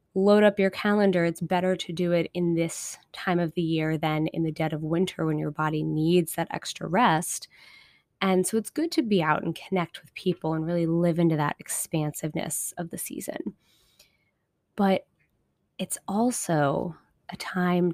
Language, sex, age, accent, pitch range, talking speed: English, female, 20-39, American, 160-190 Hz, 175 wpm